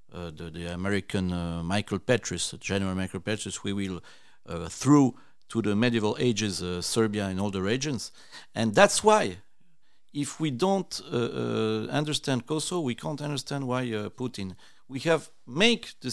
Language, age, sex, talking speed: Hungarian, 50-69, male, 165 wpm